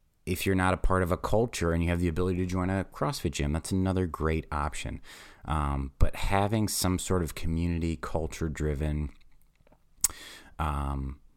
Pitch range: 70-85 Hz